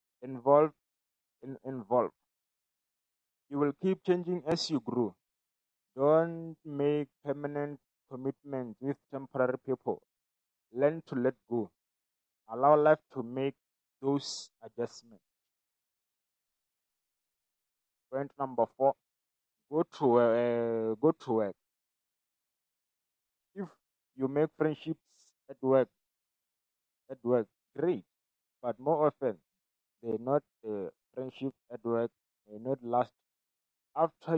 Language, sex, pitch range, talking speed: English, male, 120-145 Hz, 105 wpm